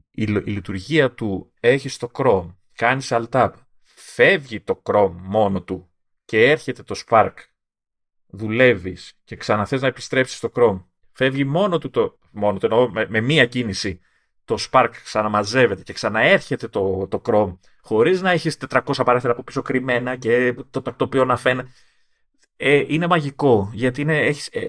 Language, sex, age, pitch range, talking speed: Greek, male, 30-49, 105-140 Hz, 145 wpm